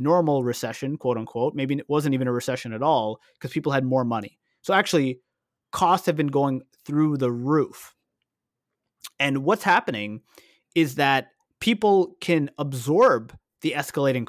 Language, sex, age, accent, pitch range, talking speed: English, male, 30-49, American, 130-175 Hz, 150 wpm